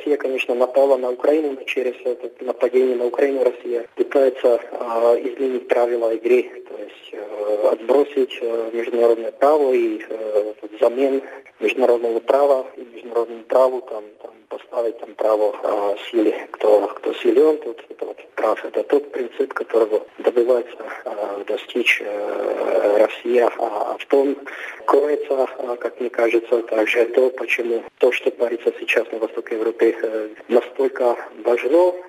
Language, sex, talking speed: Russian, male, 140 wpm